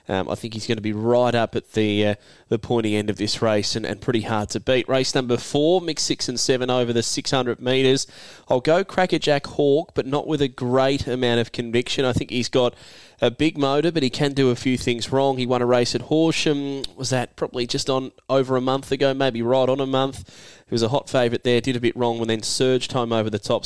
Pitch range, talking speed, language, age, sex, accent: 115-135 Hz, 250 wpm, English, 10-29, male, Australian